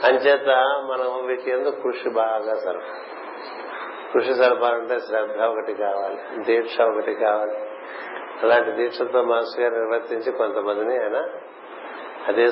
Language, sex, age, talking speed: Telugu, male, 50-69, 115 wpm